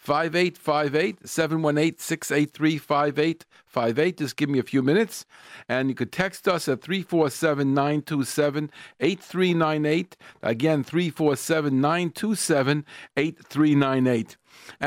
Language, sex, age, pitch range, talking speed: English, male, 50-69, 135-165 Hz, 75 wpm